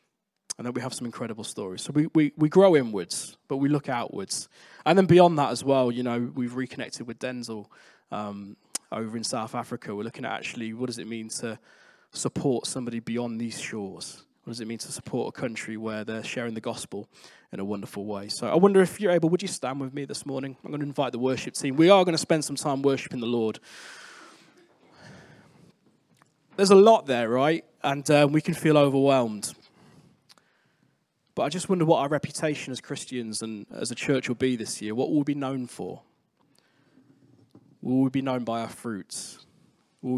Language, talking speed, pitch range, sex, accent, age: English, 205 wpm, 115-145 Hz, male, British, 20-39